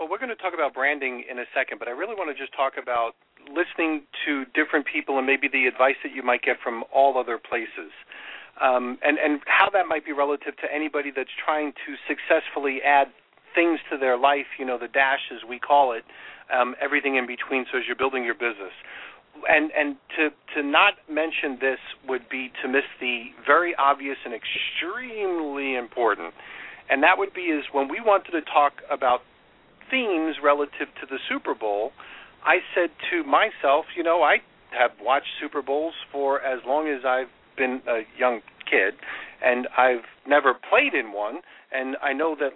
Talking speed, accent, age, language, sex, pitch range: 190 wpm, American, 40-59, English, male, 130-155 Hz